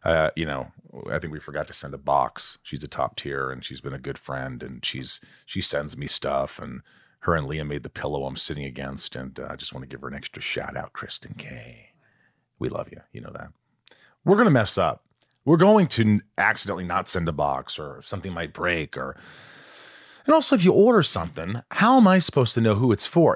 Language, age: English, 40-59